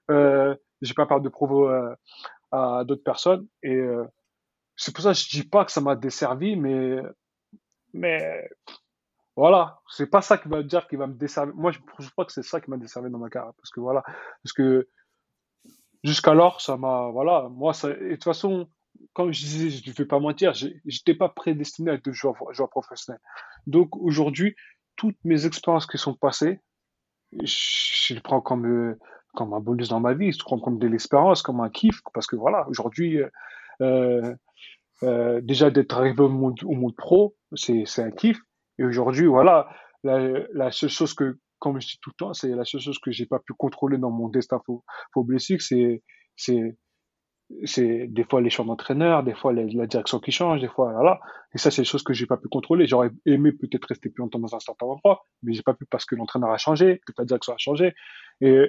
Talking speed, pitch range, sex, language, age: 215 wpm, 125-160 Hz, male, French, 20-39